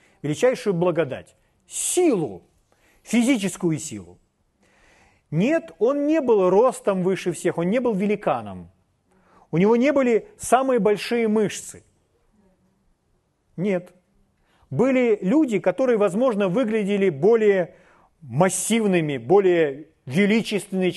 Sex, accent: male, native